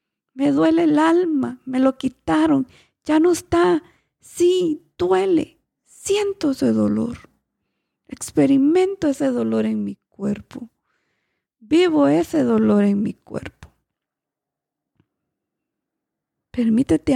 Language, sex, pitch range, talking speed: Spanish, female, 200-295 Hz, 100 wpm